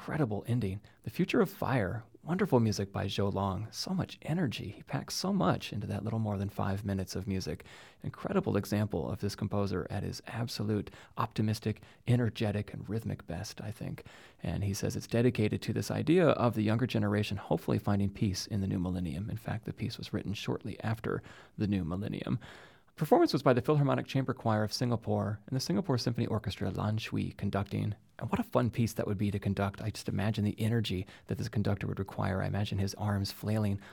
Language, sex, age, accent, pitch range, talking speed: English, male, 30-49, American, 100-115 Hz, 200 wpm